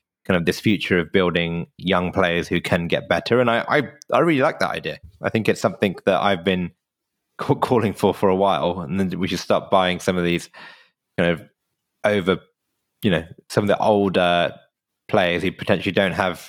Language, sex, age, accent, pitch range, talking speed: English, male, 20-39, British, 90-105 Hz, 205 wpm